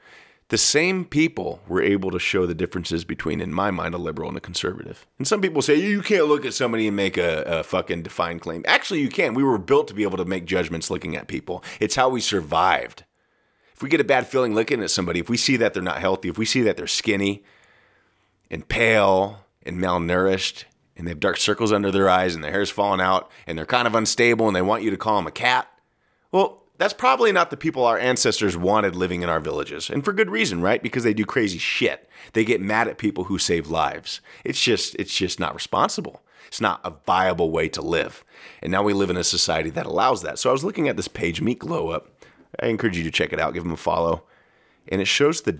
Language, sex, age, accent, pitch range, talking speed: English, male, 30-49, American, 90-120 Hz, 245 wpm